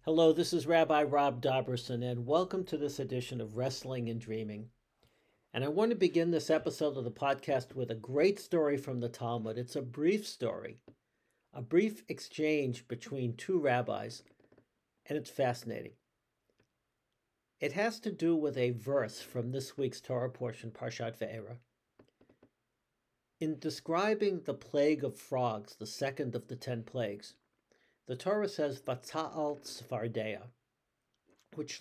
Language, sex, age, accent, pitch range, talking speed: English, male, 60-79, American, 120-155 Hz, 145 wpm